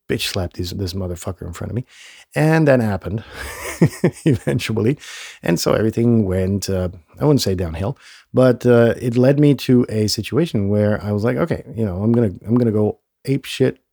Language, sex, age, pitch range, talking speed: English, male, 40-59, 95-125 Hz, 195 wpm